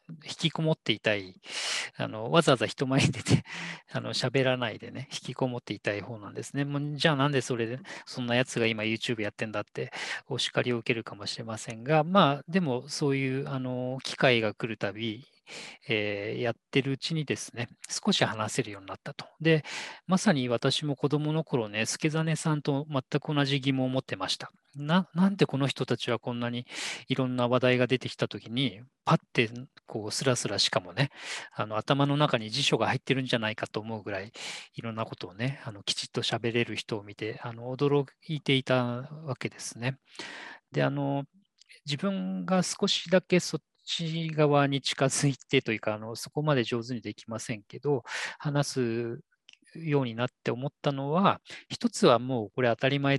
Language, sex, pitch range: Japanese, male, 115-150 Hz